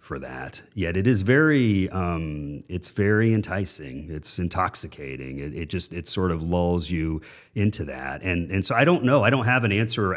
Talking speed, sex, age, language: 195 wpm, male, 30-49, English